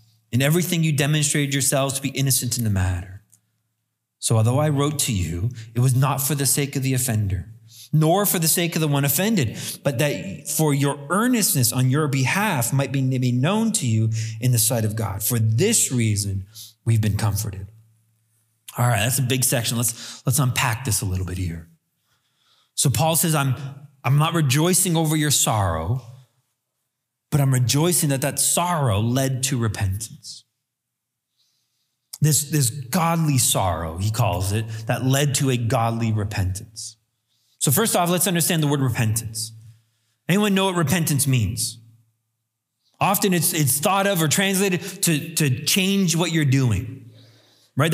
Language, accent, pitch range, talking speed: English, American, 115-155 Hz, 165 wpm